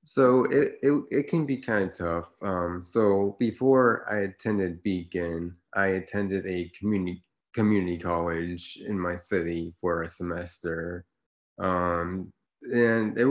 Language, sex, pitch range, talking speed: English, male, 90-105 Hz, 135 wpm